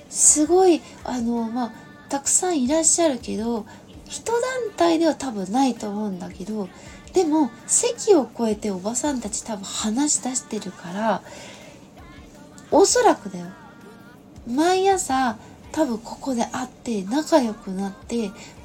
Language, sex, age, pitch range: Japanese, female, 20-39, 225-360 Hz